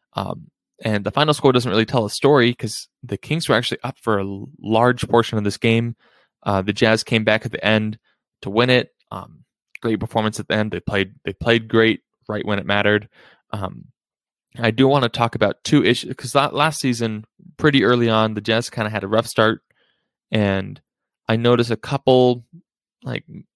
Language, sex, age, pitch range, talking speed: English, male, 20-39, 105-120 Hz, 200 wpm